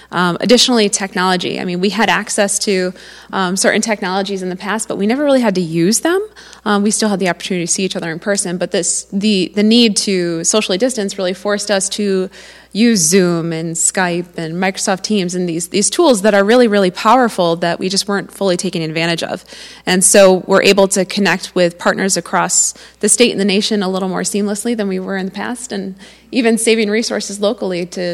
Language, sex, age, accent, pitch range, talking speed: English, female, 20-39, American, 180-210 Hz, 215 wpm